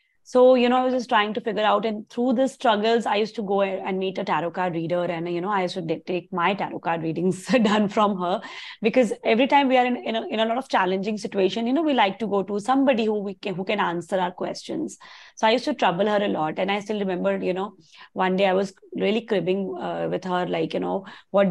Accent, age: Indian, 20-39